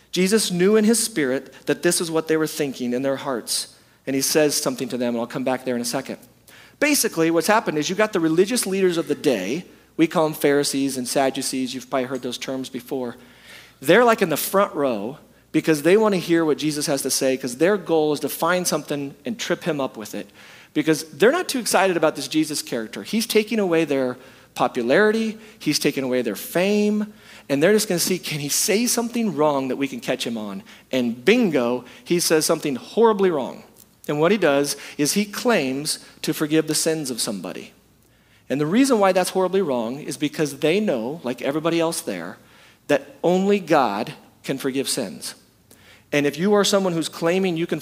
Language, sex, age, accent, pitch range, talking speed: English, male, 40-59, American, 135-185 Hz, 210 wpm